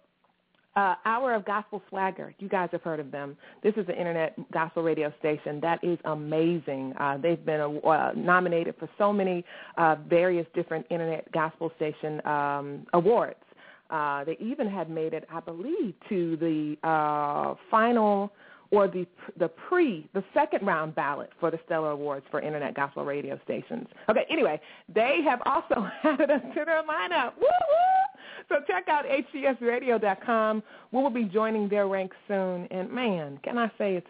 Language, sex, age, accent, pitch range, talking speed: English, female, 30-49, American, 160-225 Hz, 165 wpm